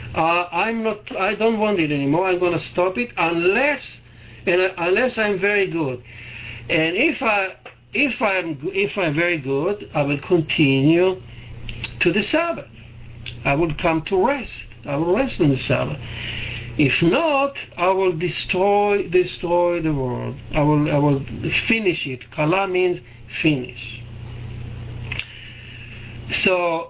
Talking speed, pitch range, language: 140 wpm, 125-195 Hz, English